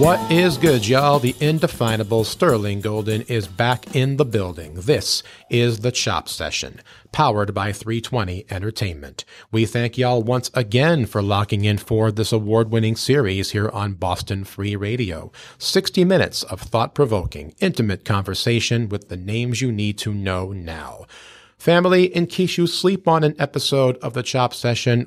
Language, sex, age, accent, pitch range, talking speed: English, male, 40-59, American, 105-140 Hz, 155 wpm